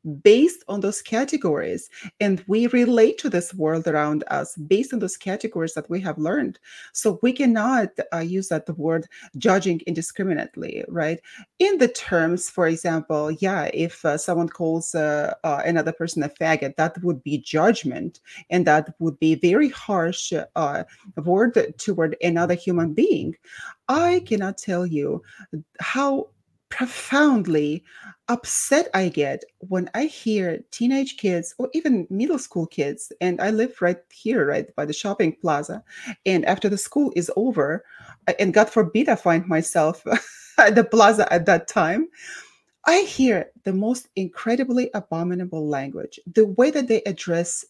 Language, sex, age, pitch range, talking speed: English, female, 30-49, 165-230 Hz, 150 wpm